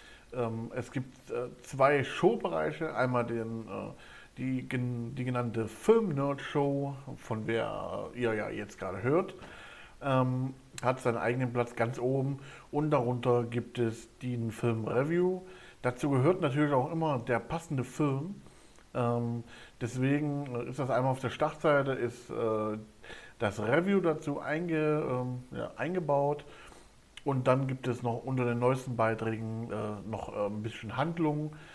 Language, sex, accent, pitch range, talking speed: German, male, German, 115-135 Hz, 130 wpm